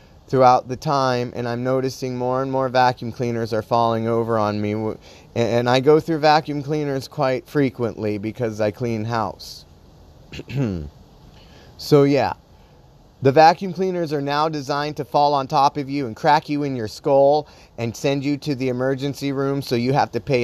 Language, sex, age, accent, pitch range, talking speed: English, male, 30-49, American, 110-130 Hz, 175 wpm